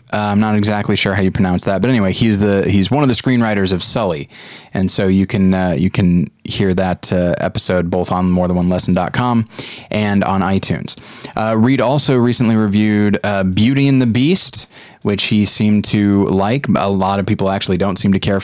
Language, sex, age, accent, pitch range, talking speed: English, male, 20-39, American, 95-115 Hz, 200 wpm